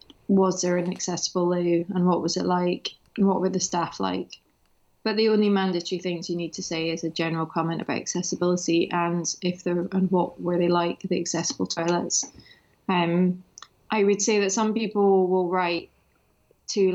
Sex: female